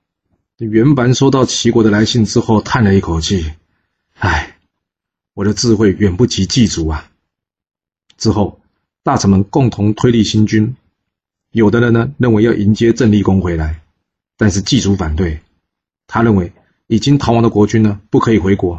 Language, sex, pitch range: Chinese, male, 90-115 Hz